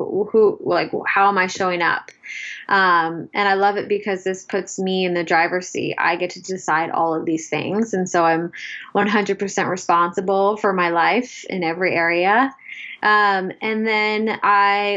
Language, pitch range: English, 180-220 Hz